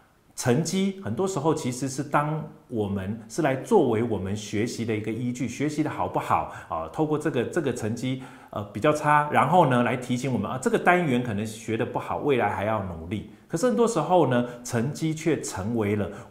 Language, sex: Chinese, male